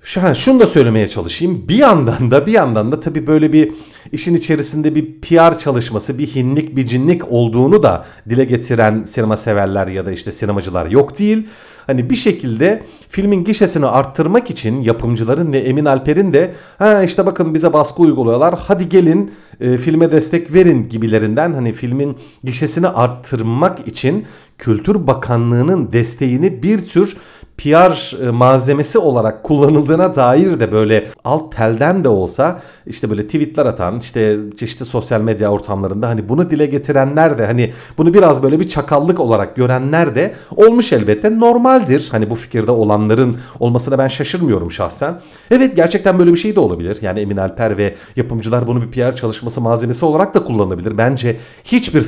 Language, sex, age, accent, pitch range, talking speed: Turkish, male, 40-59, native, 115-165 Hz, 155 wpm